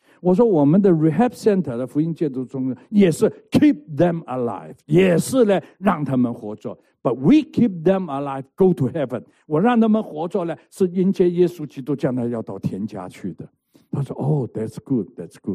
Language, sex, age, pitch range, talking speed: English, male, 60-79, 120-185 Hz, 60 wpm